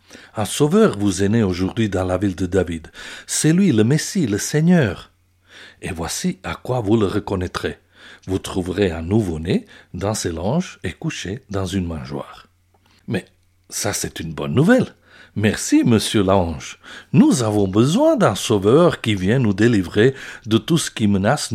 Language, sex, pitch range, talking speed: French, male, 100-160 Hz, 165 wpm